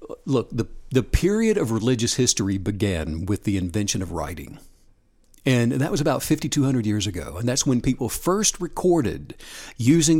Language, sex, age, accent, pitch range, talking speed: English, male, 60-79, American, 105-155 Hz, 160 wpm